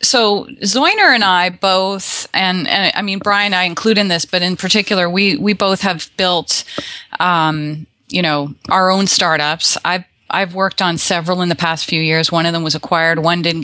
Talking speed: 200 wpm